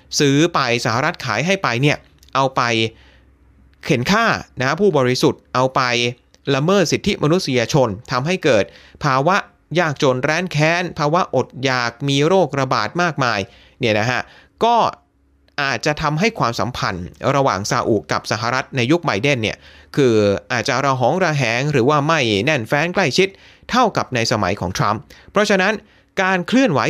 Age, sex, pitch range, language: 30-49, male, 115-170 Hz, Thai